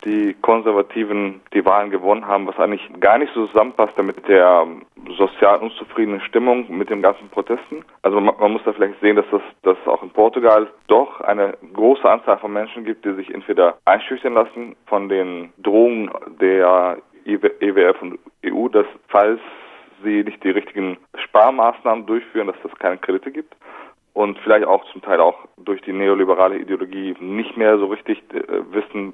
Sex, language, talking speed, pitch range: male, German, 170 wpm, 100-130 Hz